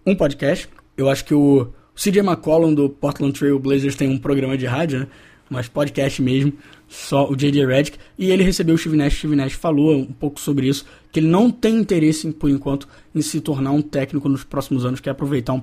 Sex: male